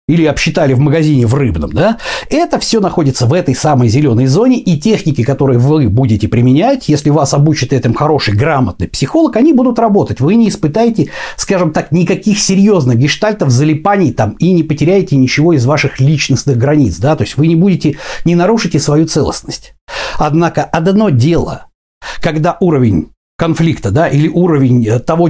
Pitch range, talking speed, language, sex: 130-180 Hz, 165 wpm, Russian, male